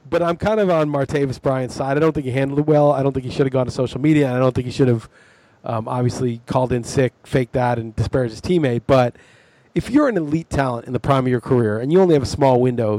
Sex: male